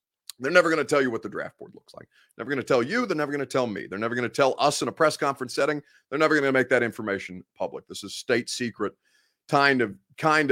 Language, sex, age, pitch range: English, male, 30-49, 120-170 Hz